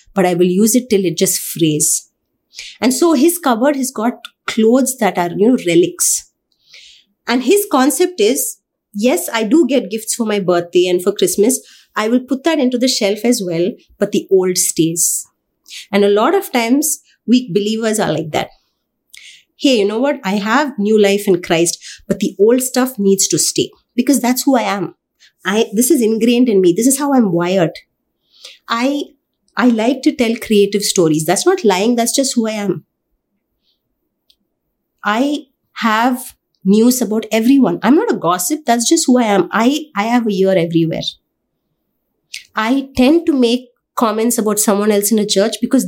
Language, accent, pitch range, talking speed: English, Indian, 200-260 Hz, 180 wpm